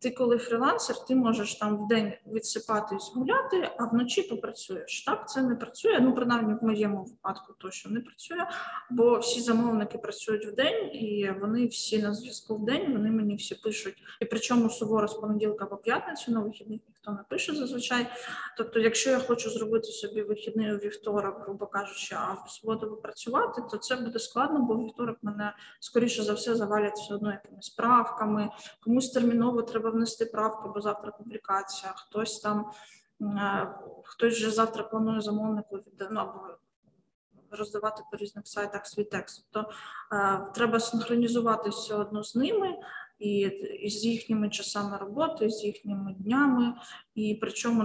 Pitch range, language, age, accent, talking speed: 205-235 Hz, Ukrainian, 20-39, native, 160 wpm